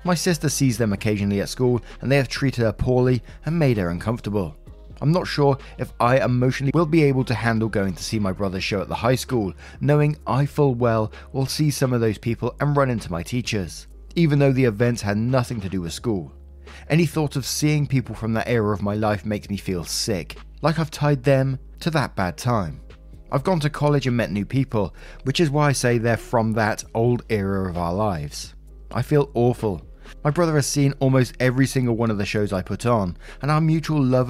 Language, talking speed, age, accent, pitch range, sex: English, 225 wpm, 20-39, British, 100-135 Hz, male